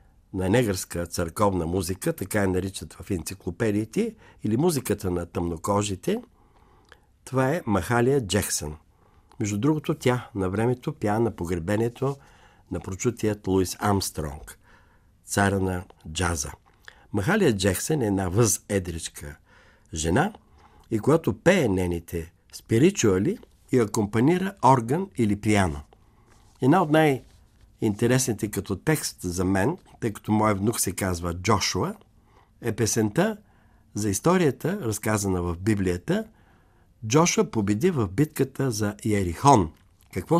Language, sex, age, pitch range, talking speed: Bulgarian, male, 60-79, 95-130 Hz, 115 wpm